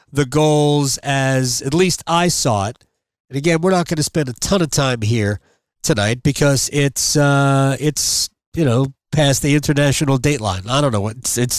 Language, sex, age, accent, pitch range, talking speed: English, male, 40-59, American, 125-160 Hz, 185 wpm